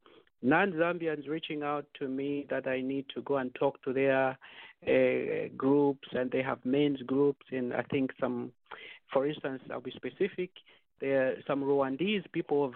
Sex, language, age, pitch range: male, English, 50-69, 135-165 Hz